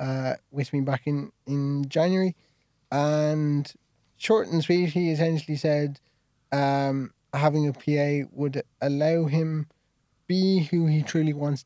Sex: male